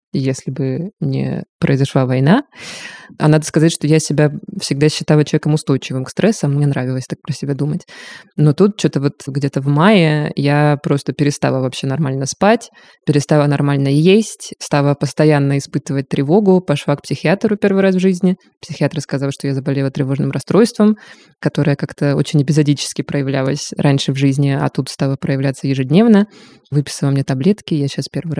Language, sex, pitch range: Russian, female, 140-170 Hz